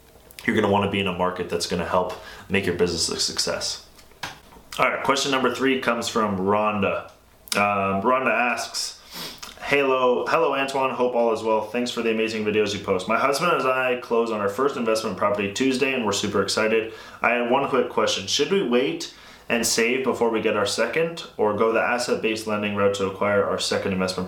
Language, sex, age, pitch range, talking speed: English, male, 20-39, 100-125 Hz, 210 wpm